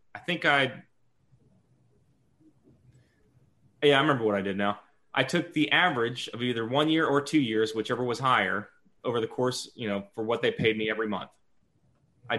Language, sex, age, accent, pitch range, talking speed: English, male, 30-49, American, 125-150 Hz, 180 wpm